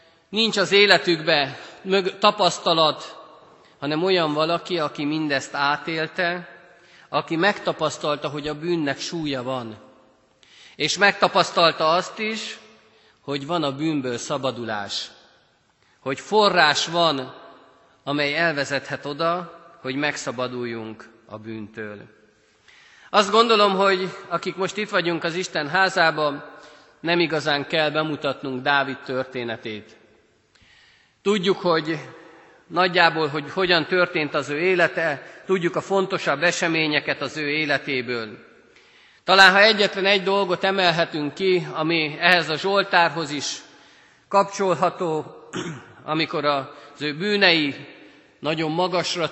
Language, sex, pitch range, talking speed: Hungarian, male, 145-180 Hz, 105 wpm